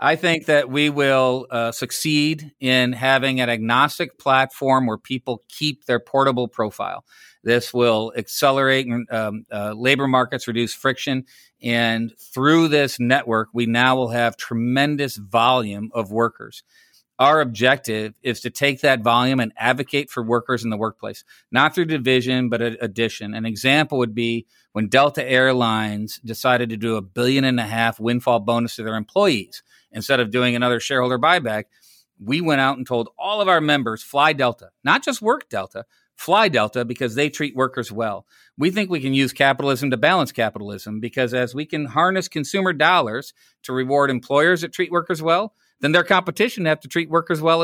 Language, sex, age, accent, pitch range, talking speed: English, male, 40-59, American, 120-145 Hz, 175 wpm